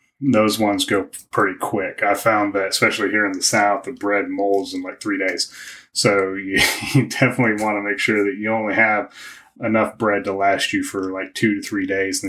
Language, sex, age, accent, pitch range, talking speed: English, male, 30-49, American, 100-115 Hz, 220 wpm